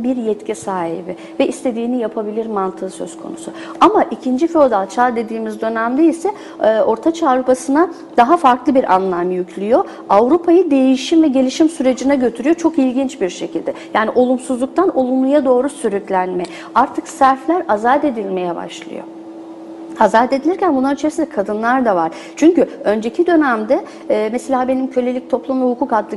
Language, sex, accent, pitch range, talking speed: English, female, Turkish, 210-290 Hz, 140 wpm